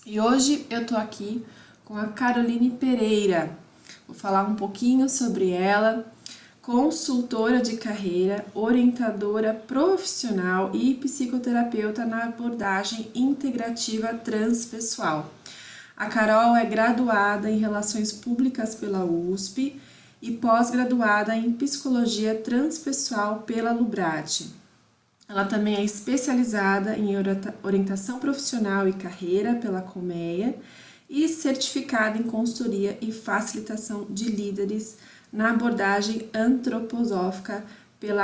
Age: 20-39